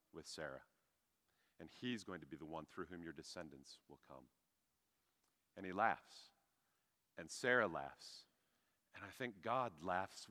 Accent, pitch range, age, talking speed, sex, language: American, 85-125 Hz, 40-59, 150 wpm, male, English